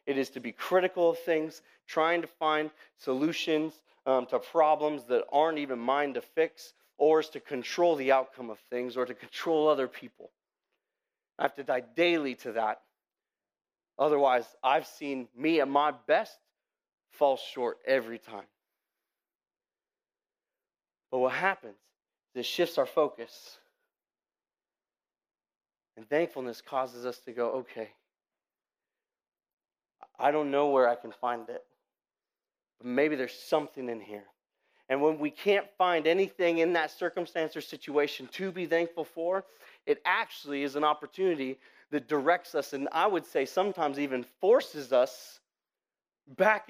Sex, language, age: male, English, 30-49